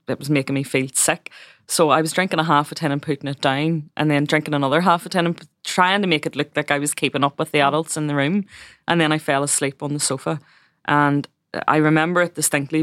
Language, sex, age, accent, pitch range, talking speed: English, female, 20-39, Irish, 140-155 Hz, 260 wpm